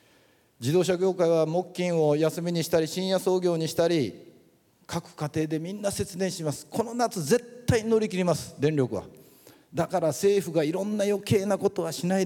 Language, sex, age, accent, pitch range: Japanese, male, 40-59, native, 125-185 Hz